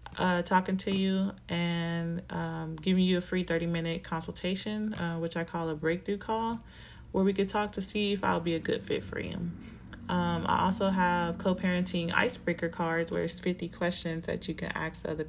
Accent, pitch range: American, 170-195 Hz